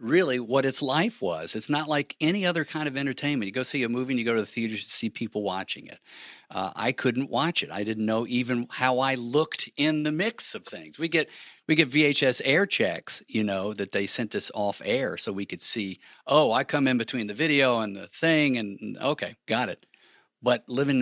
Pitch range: 110-140 Hz